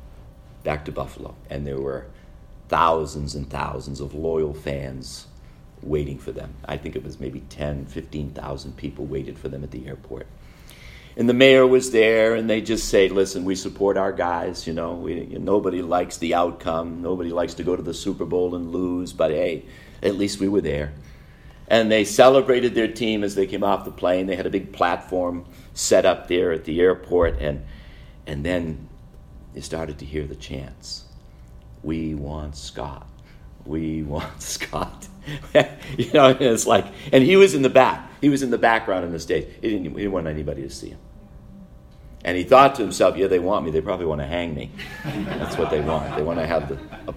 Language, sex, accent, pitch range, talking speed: English, male, American, 75-100 Hz, 200 wpm